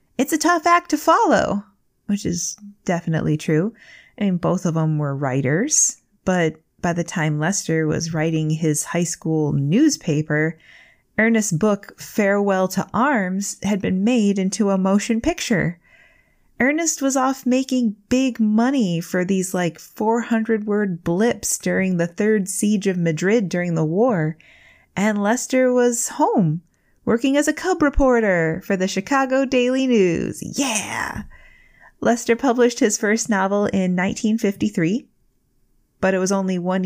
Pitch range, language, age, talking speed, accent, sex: 175-235 Hz, English, 20-39, 145 wpm, American, female